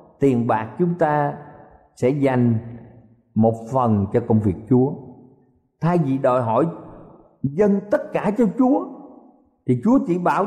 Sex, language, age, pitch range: male, Vietnamese, 50-69, 135-210 Hz